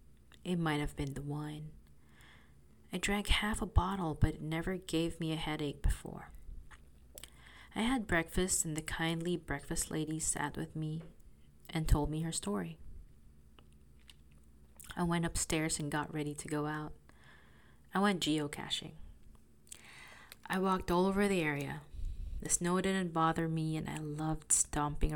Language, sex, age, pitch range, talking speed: English, female, 20-39, 140-175 Hz, 150 wpm